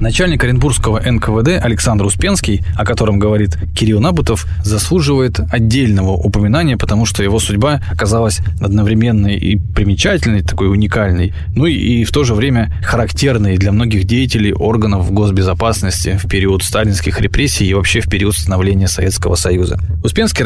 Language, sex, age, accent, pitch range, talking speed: Russian, male, 20-39, native, 95-115 Hz, 140 wpm